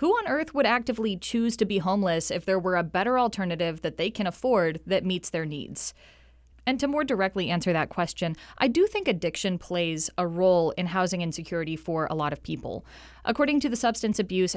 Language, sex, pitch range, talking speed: English, female, 170-230 Hz, 205 wpm